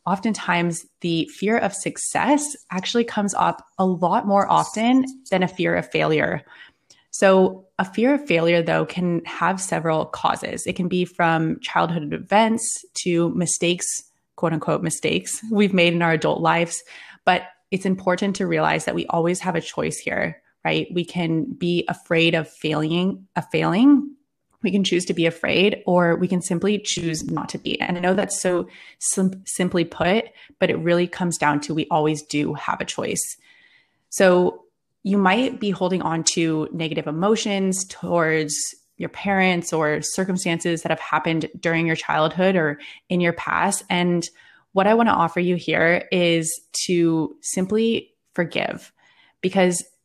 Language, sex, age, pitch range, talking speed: English, female, 20-39, 165-200 Hz, 160 wpm